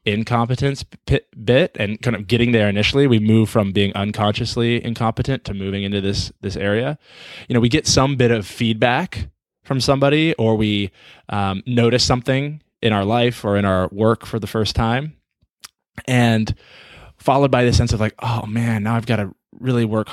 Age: 20-39